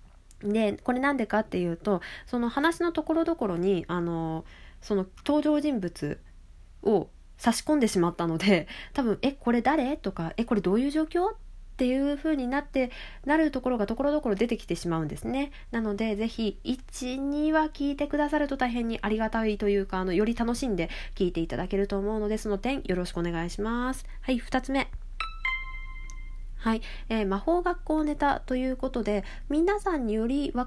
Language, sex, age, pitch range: Japanese, female, 20-39, 200-290 Hz